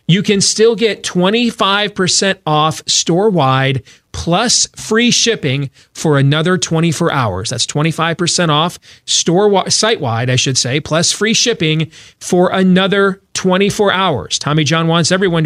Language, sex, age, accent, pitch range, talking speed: English, male, 40-59, American, 150-195 Hz, 130 wpm